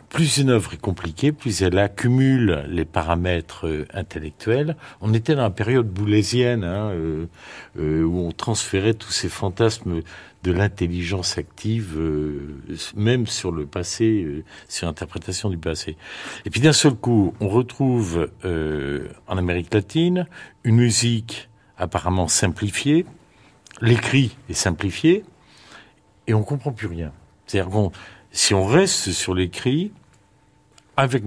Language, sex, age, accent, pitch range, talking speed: French, male, 50-69, French, 90-125 Hz, 135 wpm